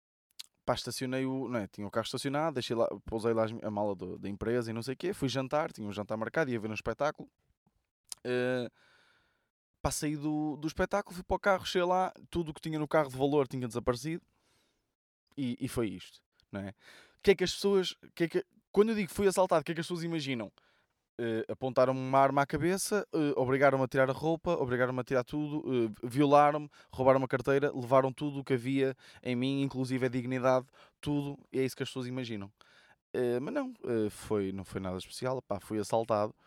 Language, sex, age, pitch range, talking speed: Portuguese, male, 20-39, 115-150 Hz, 215 wpm